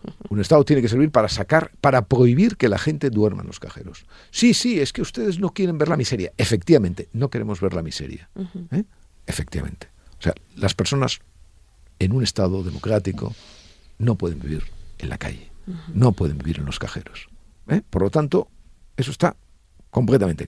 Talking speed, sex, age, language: 180 wpm, male, 50-69, Spanish